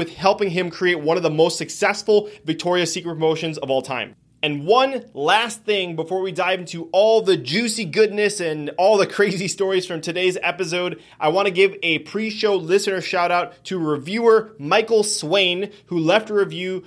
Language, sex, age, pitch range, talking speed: English, male, 30-49, 160-205 Hz, 185 wpm